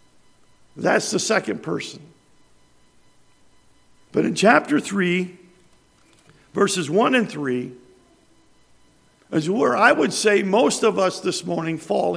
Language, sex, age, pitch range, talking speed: English, male, 50-69, 175-235 Hz, 115 wpm